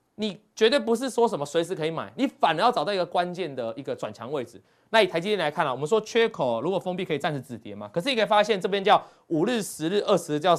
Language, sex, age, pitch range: Chinese, male, 30-49, 160-235 Hz